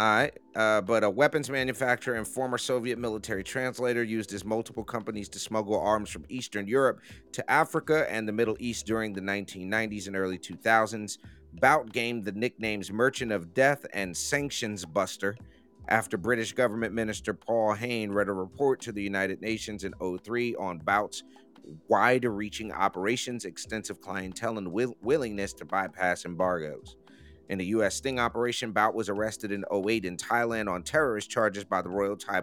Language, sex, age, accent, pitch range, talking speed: English, male, 30-49, American, 100-120 Hz, 160 wpm